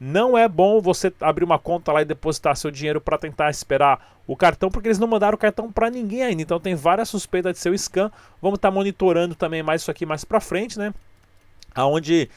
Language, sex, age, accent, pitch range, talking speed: Portuguese, male, 30-49, Brazilian, 155-195 Hz, 225 wpm